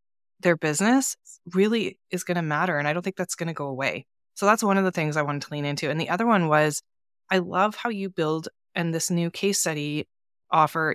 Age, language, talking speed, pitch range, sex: 20-39, English, 235 wpm, 145-190 Hz, female